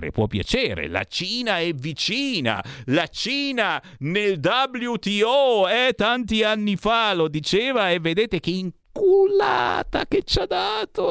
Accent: native